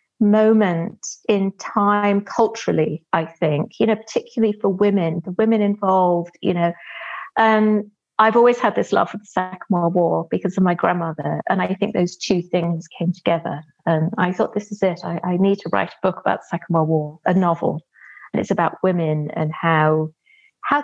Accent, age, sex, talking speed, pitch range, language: British, 30-49, female, 195 wpm, 180-230 Hz, English